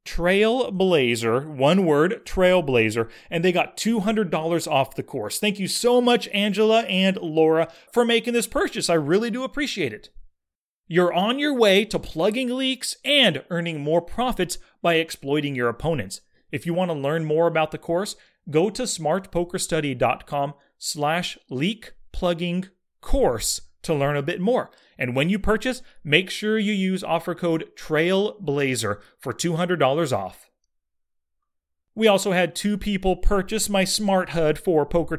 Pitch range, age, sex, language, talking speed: 150-210 Hz, 30-49, male, English, 155 wpm